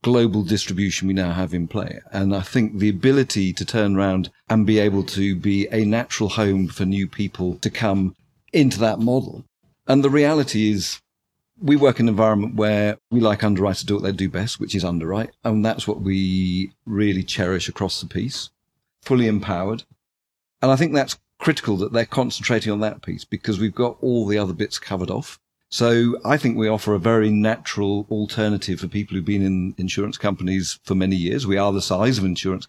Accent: British